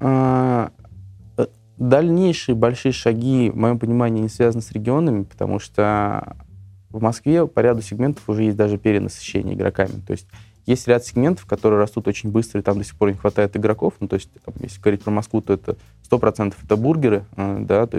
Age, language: 20-39, Russian